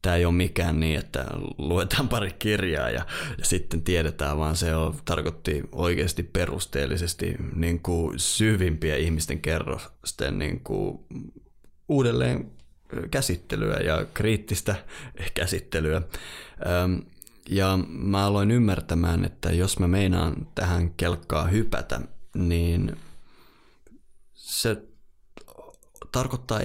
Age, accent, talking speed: 20-39, native, 95 wpm